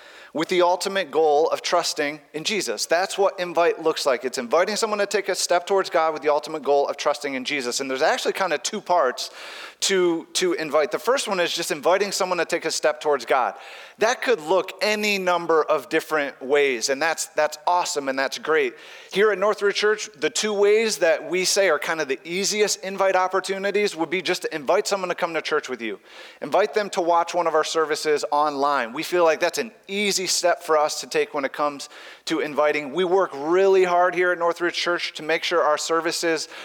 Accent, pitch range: American, 150-190 Hz